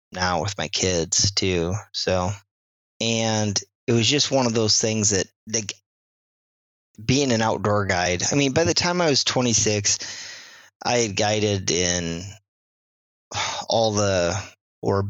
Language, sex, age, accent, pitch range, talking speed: English, male, 30-49, American, 90-110 Hz, 140 wpm